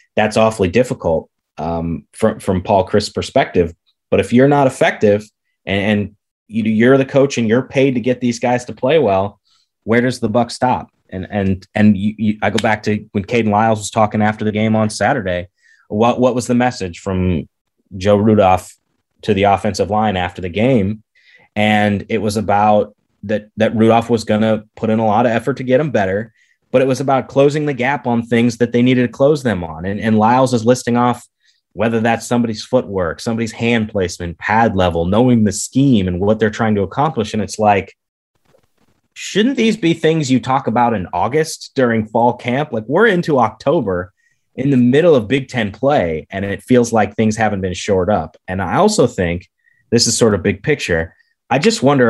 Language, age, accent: English, 20-39, American